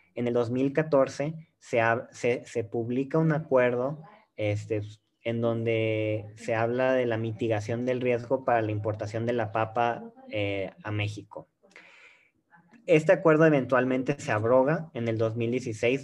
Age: 30-49